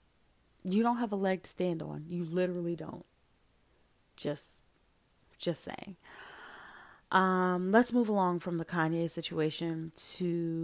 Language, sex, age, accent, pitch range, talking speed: English, female, 30-49, American, 160-210 Hz, 130 wpm